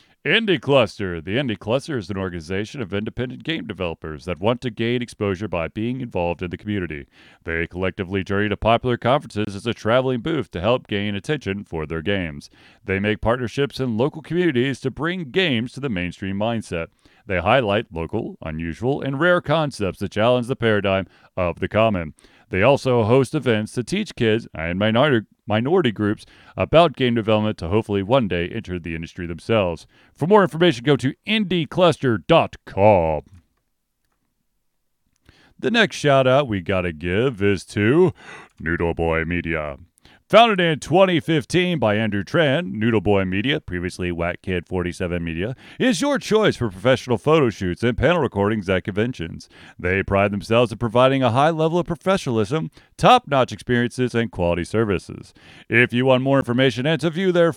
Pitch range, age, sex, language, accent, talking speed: 95-140 Hz, 40-59, male, English, American, 160 wpm